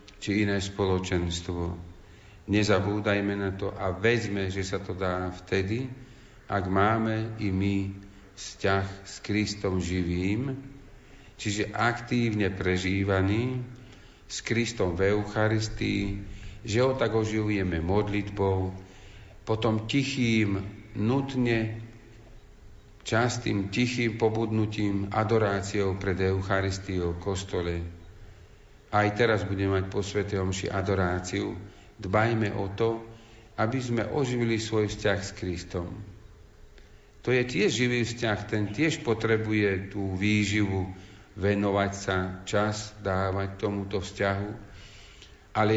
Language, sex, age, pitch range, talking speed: Slovak, male, 50-69, 95-115 Hz, 105 wpm